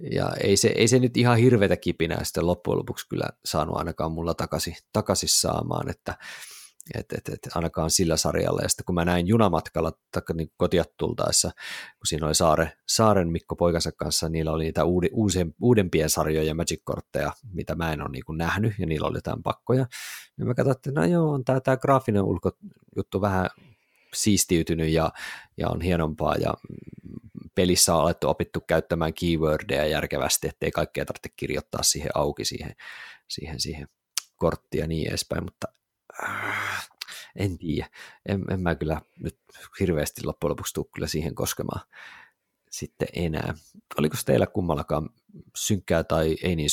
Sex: male